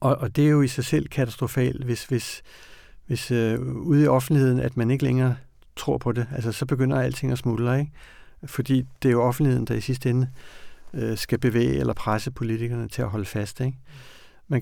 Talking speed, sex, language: 200 wpm, male, Danish